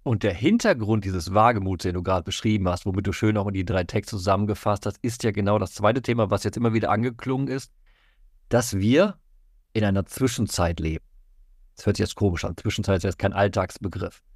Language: German